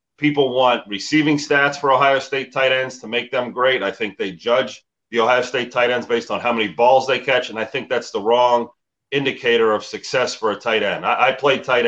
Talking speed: 230 wpm